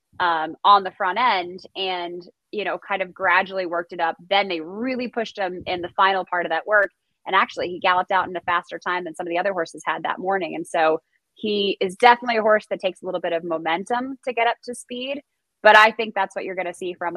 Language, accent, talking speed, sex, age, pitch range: English, American, 255 wpm, female, 20-39, 175-220 Hz